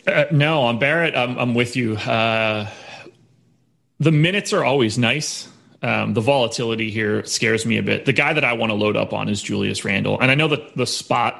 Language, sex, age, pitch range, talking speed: English, male, 30-49, 110-130 Hz, 210 wpm